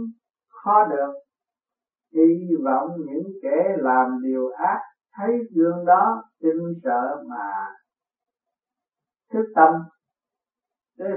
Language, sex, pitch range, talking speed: Vietnamese, male, 165-225 Hz, 95 wpm